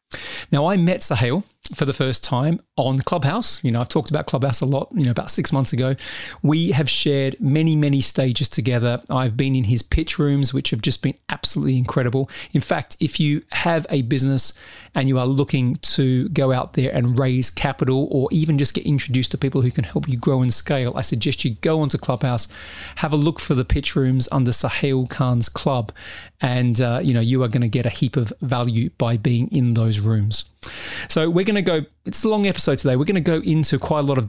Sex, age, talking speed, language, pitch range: male, 30-49, 225 wpm, English, 125-150 Hz